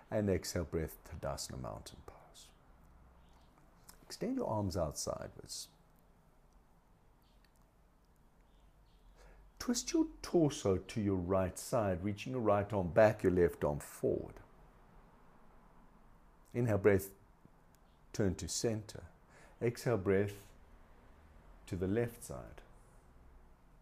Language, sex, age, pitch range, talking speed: English, male, 60-79, 95-130 Hz, 95 wpm